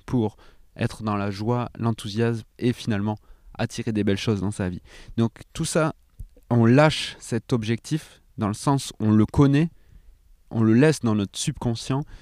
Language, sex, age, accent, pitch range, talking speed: French, male, 30-49, French, 100-130 Hz, 170 wpm